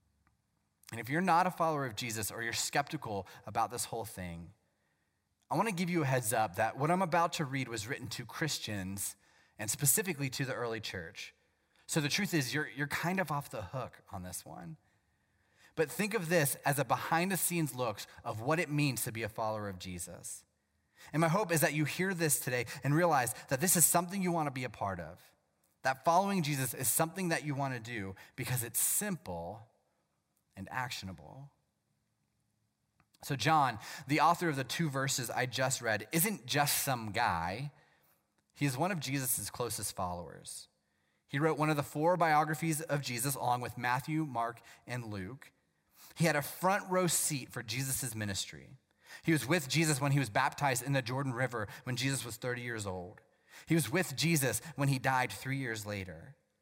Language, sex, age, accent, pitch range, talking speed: English, male, 30-49, American, 110-160 Hz, 195 wpm